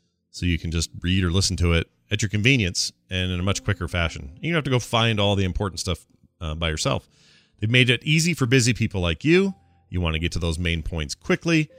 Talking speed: 250 wpm